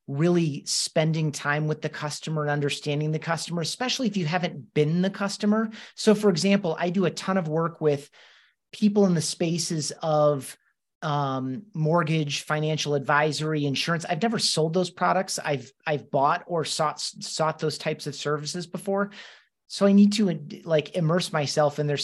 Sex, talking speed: male, 170 wpm